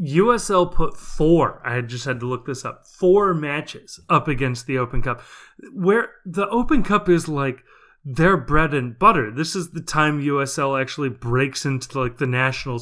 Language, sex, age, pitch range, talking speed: English, male, 30-49, 135-185 Hz, 180 wpm